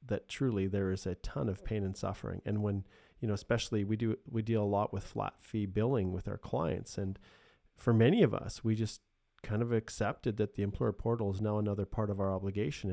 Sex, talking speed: male, 230 wpm